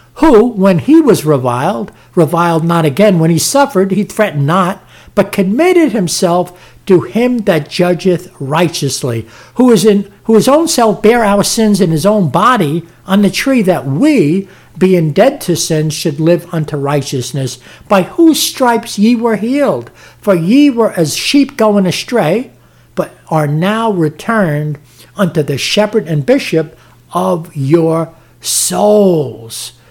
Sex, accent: male, American